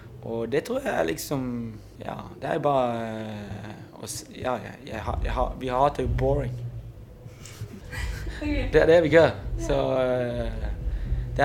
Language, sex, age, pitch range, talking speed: Danish, male, 20-39, 110-135 Hz, 120 wpm